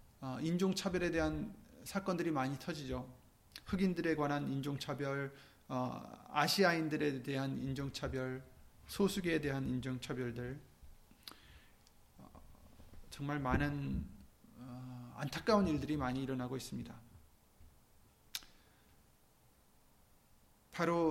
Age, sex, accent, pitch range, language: 30-49, male, native, 120-165 Hz, Korean